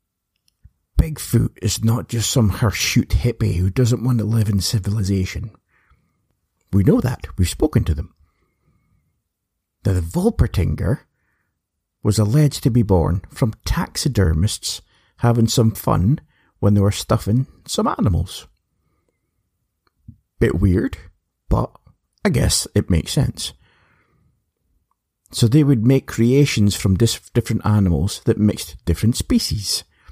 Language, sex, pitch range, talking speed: English, male, 90-120 Hz, 120 wpm